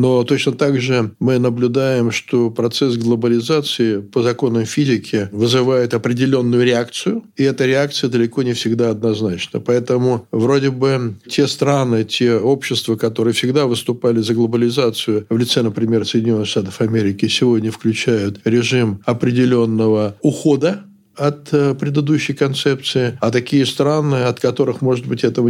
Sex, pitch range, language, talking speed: male, 115-135 Hz, Russian, 130 wpm